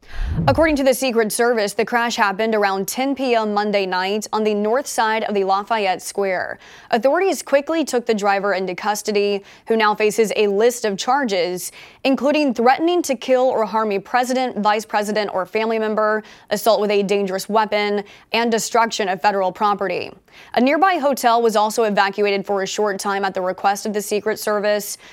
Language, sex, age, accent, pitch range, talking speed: English, female, 20-39, American, 205-245 Hz, 180 wpm